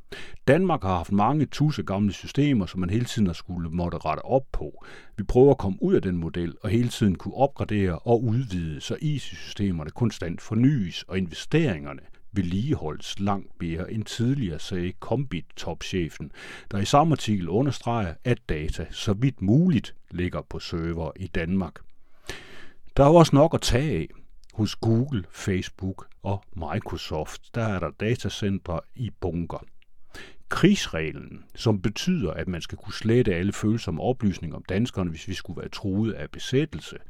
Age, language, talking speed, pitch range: 60-79, Danish, 160 wpm, 90-115 Hz